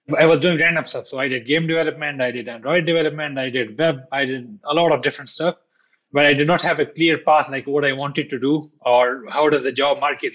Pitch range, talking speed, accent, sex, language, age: 140-160 Hz, 255 wpm, Indian, male, English, 20-39